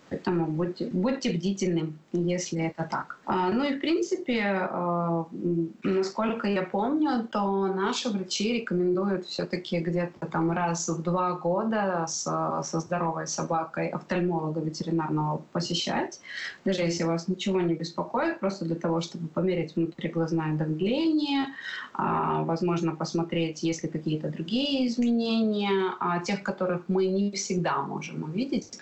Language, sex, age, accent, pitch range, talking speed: Russian, female, 20-39, native, 165-195 Hz, 125 wpm